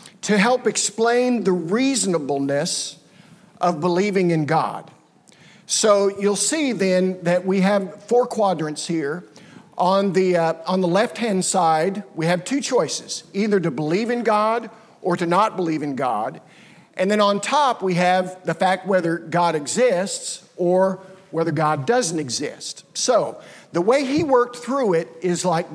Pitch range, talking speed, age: 170-210 Hz, 150 wpm, 50-69